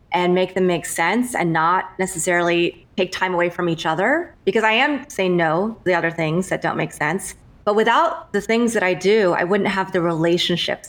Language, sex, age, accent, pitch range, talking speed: English, female, 30-49, American, 175-210 Hz, 215 wpm